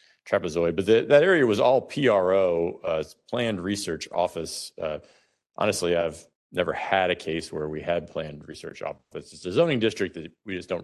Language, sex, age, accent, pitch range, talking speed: English, male, 50-69, American, 80-95 Hz, 175 wpm